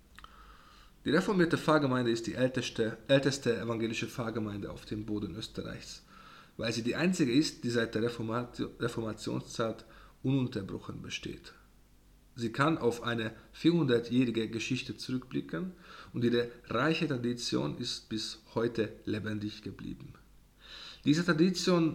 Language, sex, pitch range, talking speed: German, male, 115-145 Hz, 115 wpm